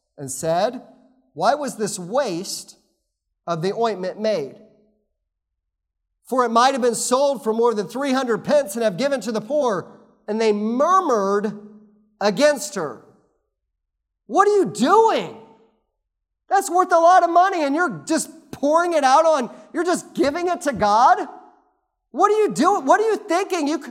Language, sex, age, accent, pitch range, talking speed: English, male, 40-59, American, 215-325 Hz, 160 wpm